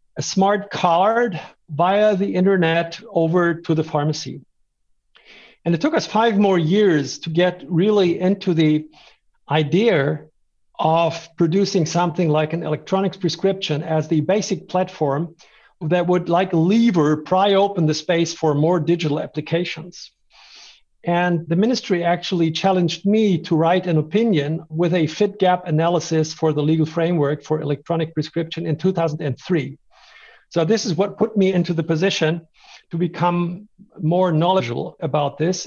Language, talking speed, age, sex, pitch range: English, 145 wpm, 50-69, male, 160-190 Hz